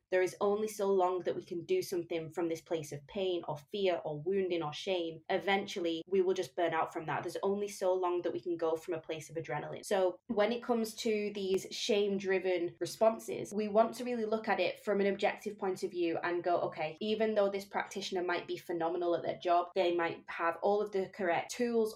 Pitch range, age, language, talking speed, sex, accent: 170-200 Hz, 20-39, English, 230 wpm, female, British